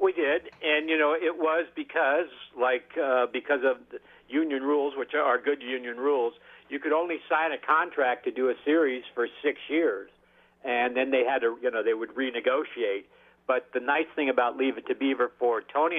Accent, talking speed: American, 205 wpm